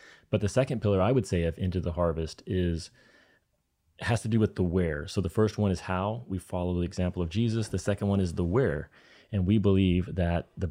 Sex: male